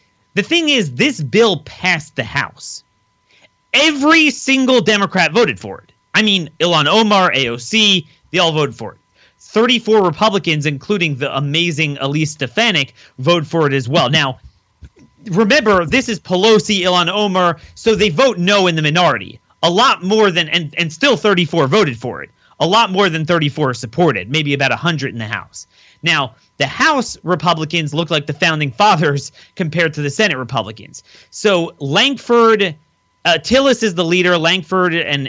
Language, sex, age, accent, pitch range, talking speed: English, male, 30-49, American, 135-180 Hz, 165 wpm